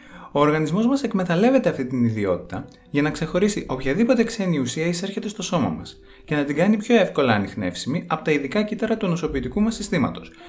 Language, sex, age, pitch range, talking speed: Greek, male, 20-39, 125-190 Hz, 185 wpm